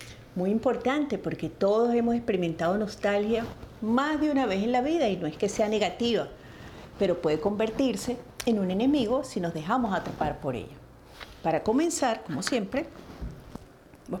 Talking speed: 155 wpm